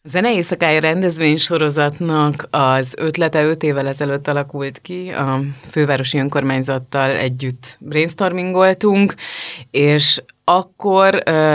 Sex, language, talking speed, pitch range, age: female, Hungarian, 100 wpm, 135-165 Hz, 30-49